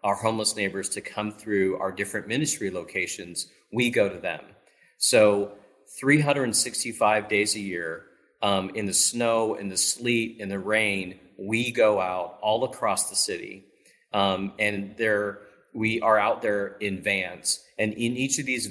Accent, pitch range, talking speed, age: American, 100-120 Hz, 155 wpm, 40-59